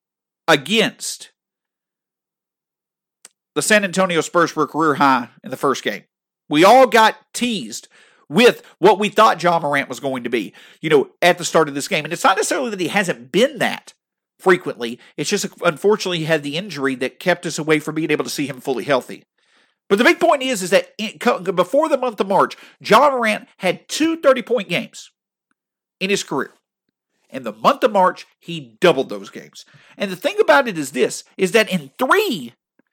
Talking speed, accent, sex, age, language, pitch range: 190 wpm, American, male, 50-69, English, 170-260 Hz